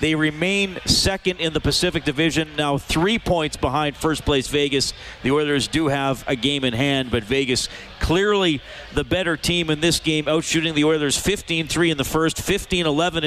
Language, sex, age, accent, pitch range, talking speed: English, male, 40-59, American, 135-165 Hz, 175 wpm